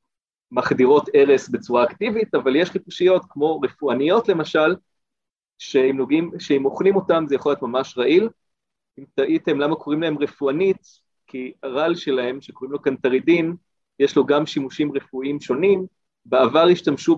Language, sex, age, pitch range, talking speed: Hebrew, male, 30-49, 135-185 Hz, 135 wpm